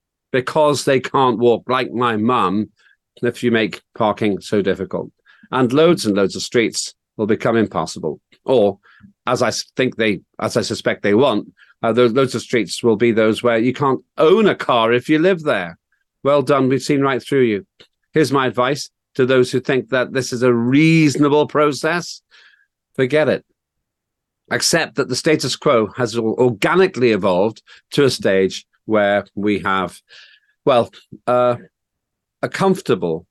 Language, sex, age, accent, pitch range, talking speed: English, male, 50-69, British, 110-140 Hz, 160 wpm